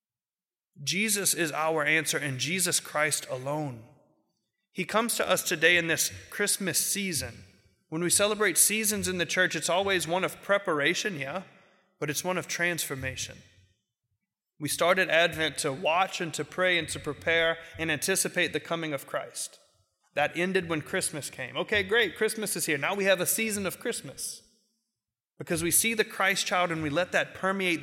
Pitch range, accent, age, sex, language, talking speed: 145-185 Hz, American, 30-49, male, English, 170 wpm